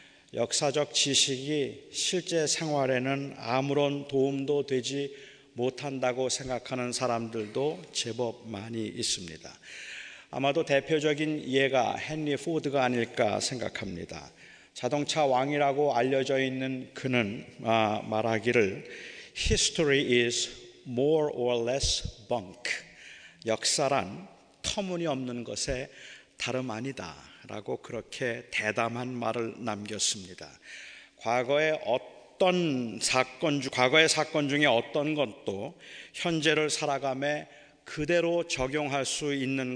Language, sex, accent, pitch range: Korean, male, native, 120-145 Hz